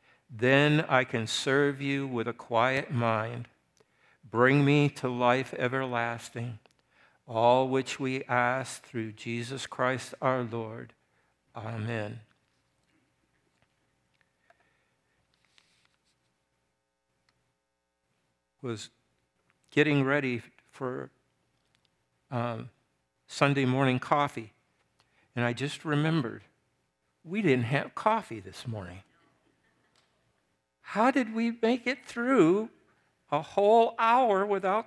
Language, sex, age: English, male, 60-79